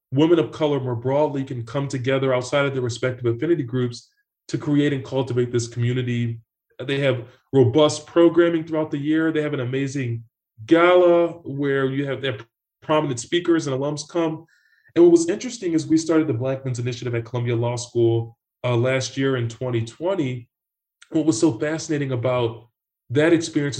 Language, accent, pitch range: English, American, 125-150 Hz